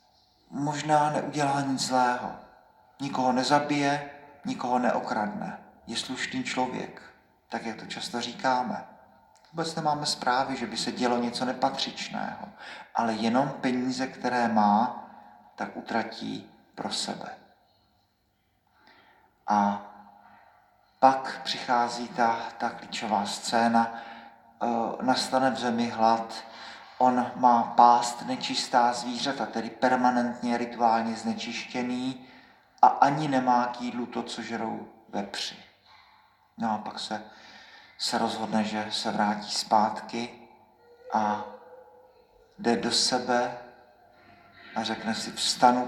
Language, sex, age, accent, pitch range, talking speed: Czech, male, 40-59, native, 115-130 Hz, 105 wpm